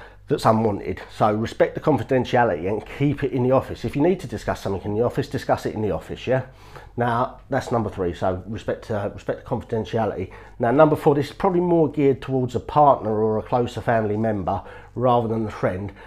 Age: 40-59